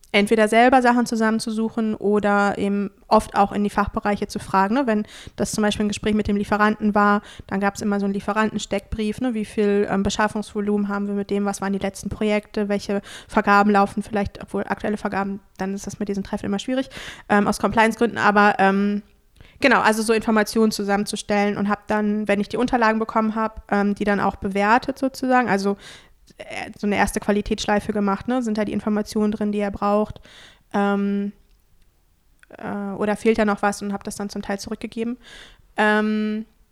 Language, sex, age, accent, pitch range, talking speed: German, female, 20-39, German, 205-225 Hz, 190 wpm